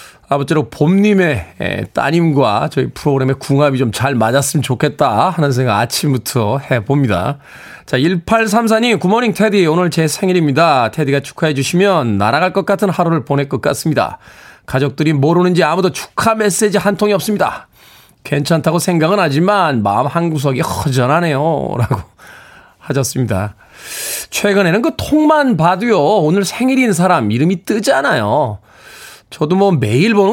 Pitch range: 135-190 Hz